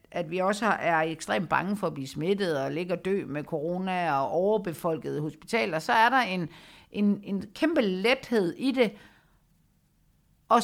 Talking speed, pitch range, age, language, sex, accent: 170 wpm, 165-225 Hz, 60-79, Danish, female, native